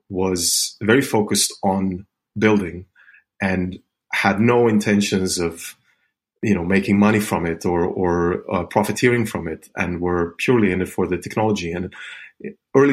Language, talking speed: English, 150 wpm